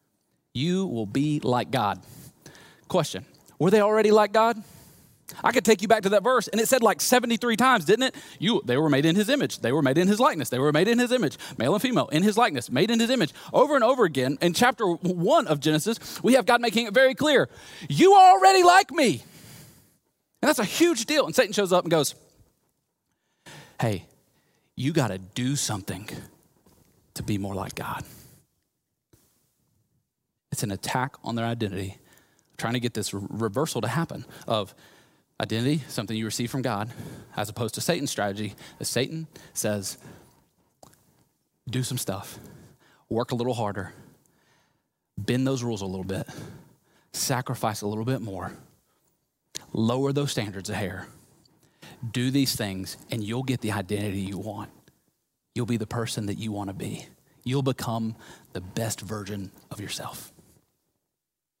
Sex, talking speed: male, 170 wpm